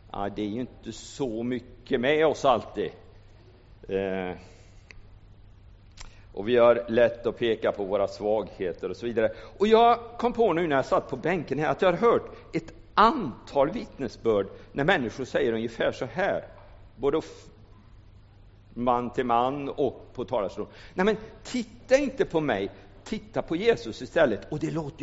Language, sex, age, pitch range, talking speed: Swedish, male, 50-69, 100-115 Hz, 160 wpm